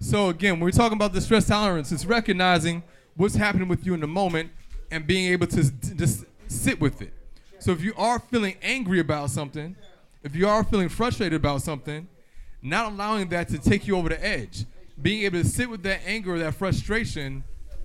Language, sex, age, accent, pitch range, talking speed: English, male, 20-39, American, 135-195 Hz, 200 wpm